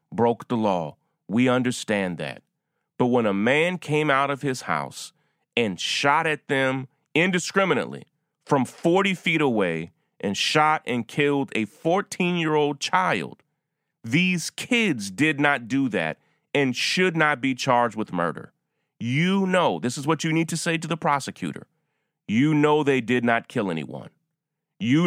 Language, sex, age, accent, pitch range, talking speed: English, male, 30-49, American, 135-170 Hz, 155 wpm